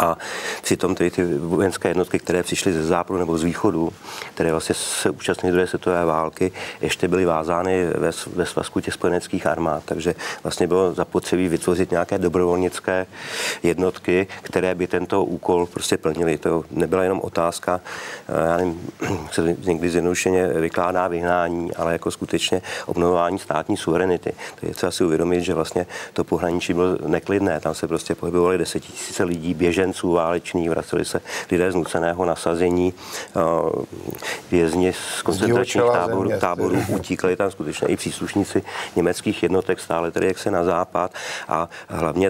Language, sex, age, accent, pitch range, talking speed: Czech, male, 40-59, native, 85-95 Hz, 150 wpm